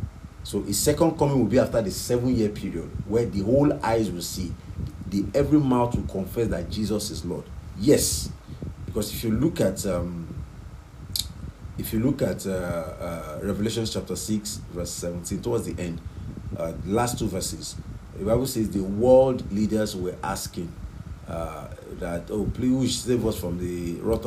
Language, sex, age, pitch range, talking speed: English, male, 40-59, 90-115 Hz, 170 wpm